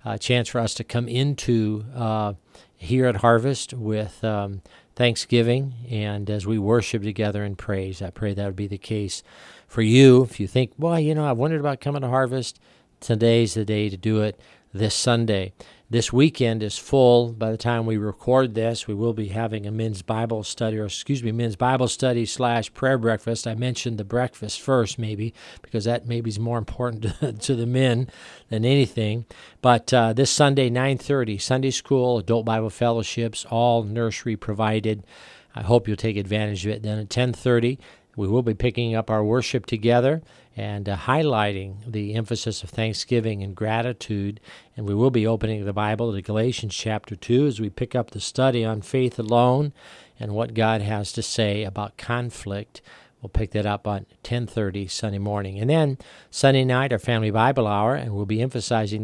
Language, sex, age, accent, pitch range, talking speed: English, male, 50-69, American, 105-125 Hz, 185 wpm